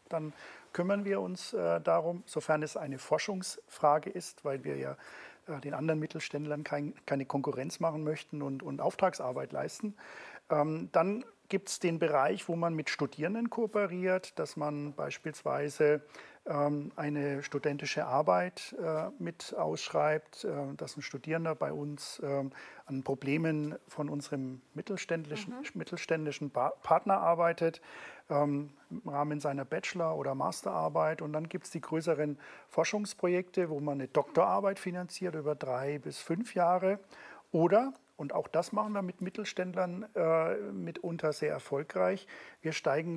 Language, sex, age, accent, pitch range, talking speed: German, male, 40-59, German, 150-185 Hz, 130 wpm